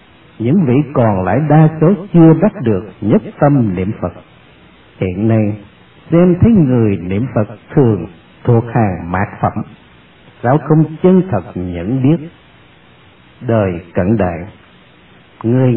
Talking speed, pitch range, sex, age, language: 135 wpm, 100-160 Hz, male, 60-79, Vietnamese